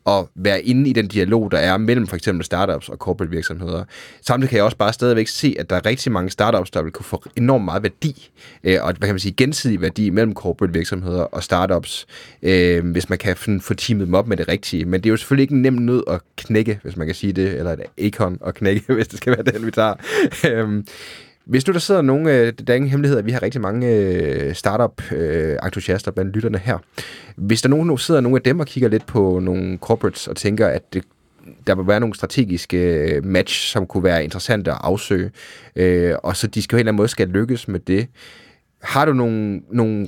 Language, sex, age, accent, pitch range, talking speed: Danish, male, 20-39, native, 95-120 Hz, 215 wpm